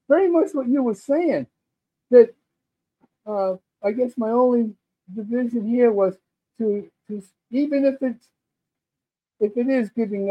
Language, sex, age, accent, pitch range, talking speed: English, male, 60-79, American, 180-240 Hz, 140 wpm